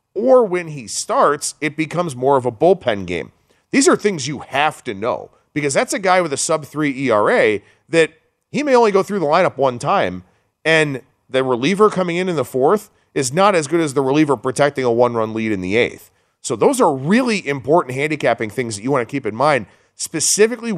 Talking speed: 210 wpm